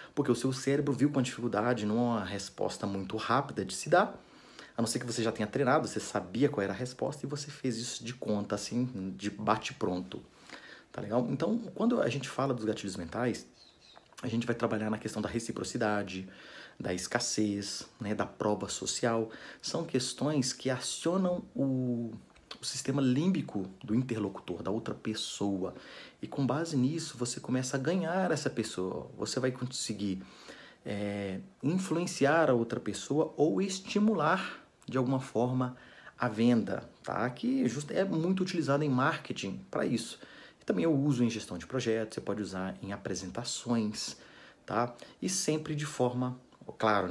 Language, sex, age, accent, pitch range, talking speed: Portuguese, male, 30-49, Brazilian, 105-135 Hz, 160 wpm